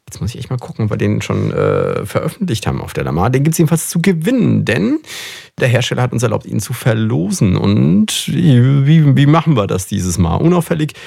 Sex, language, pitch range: male, German, 100-145 Hz